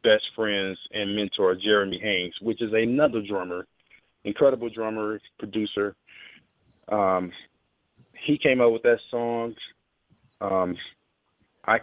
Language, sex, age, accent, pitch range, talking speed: English, male, 20-39, American, 100-120 Hz, 110 wpm